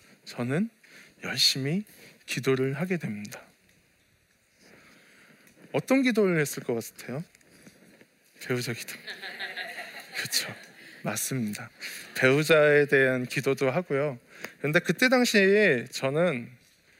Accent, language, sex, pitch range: native, Korean, male, 135-185 Hz